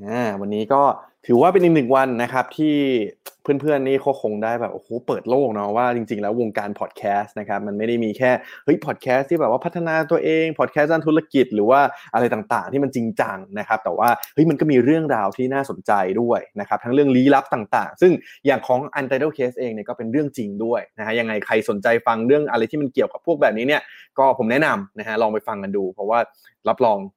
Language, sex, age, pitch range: Thai, male, 20-39, 115-145 Hz